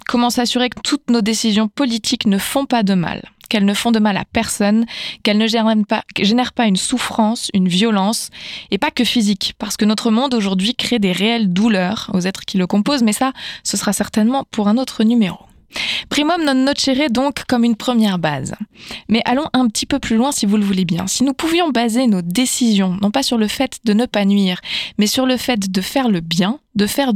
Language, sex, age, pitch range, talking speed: French, female, 20-39, 200-250 Hz, 225 wpm